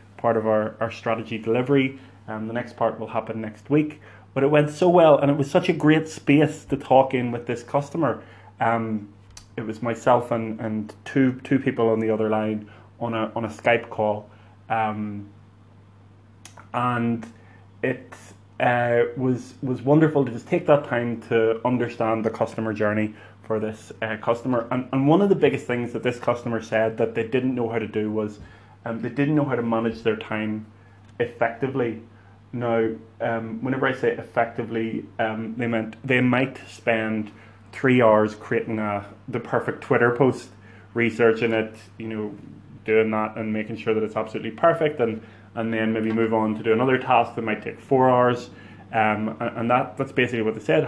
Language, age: English, 20-39